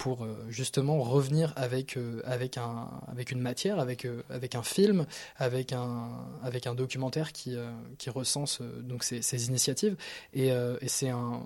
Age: 20-39